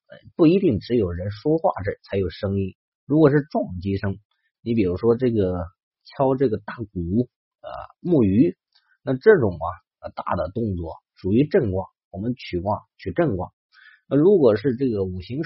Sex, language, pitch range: male, Chinese, 95-130 Hz